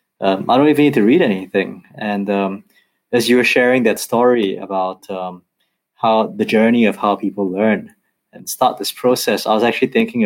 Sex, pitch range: male, 100-130 Hz